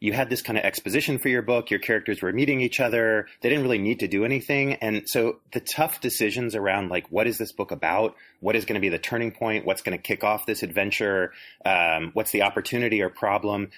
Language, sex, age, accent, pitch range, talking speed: English, male, 30-49, American, 100-125 Hz, 240 wpm